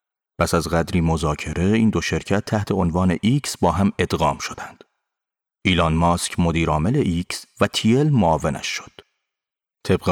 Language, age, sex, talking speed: Persian, 30-49, male, 135 wpm